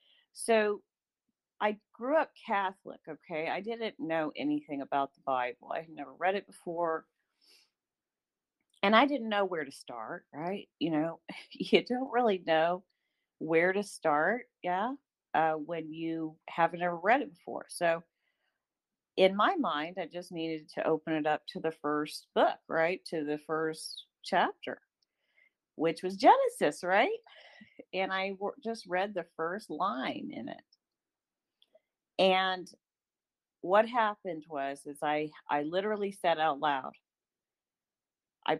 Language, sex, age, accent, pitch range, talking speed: English, female, 40-59, American, 150-210 Hz, 140 wpm